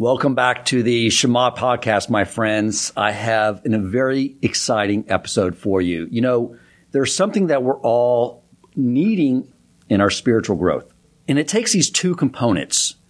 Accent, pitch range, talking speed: American, 110-145 Hz, 160 wpm